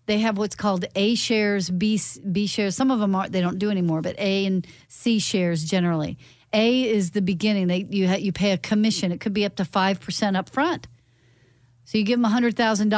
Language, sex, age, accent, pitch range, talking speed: English, female, 40-59, American, 160-215 Hz, 215 wpm